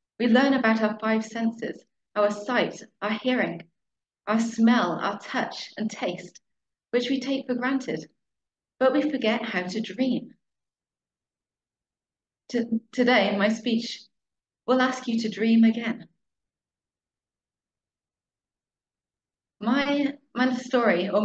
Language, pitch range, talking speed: English, 200-240 Hz, 120 wpm